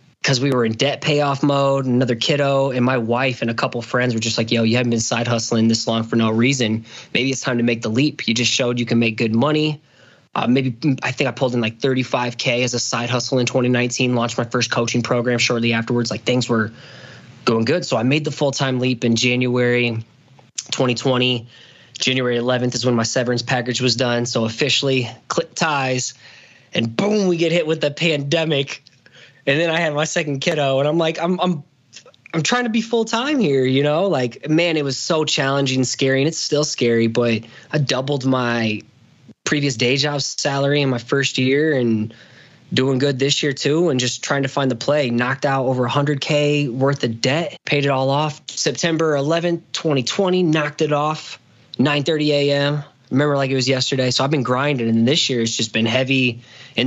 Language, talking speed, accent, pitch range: English, 210 wpm, American, 120-145 Hz